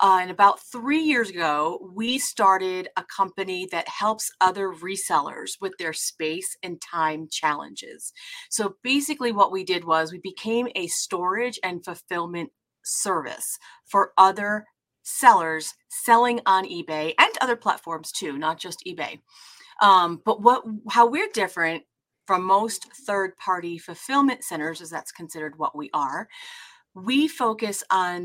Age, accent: 30-49, American